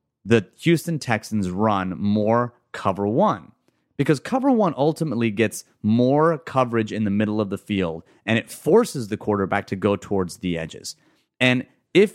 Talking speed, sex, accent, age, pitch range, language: 160 wpm, male, American, 30-49, 100-140 Hz, English